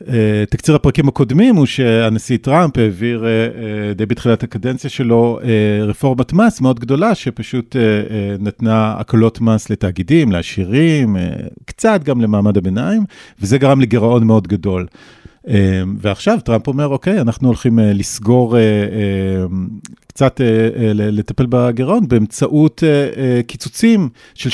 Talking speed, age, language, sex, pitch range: 125 wpm, 40-59, Hebrew, male, 105-135 Hz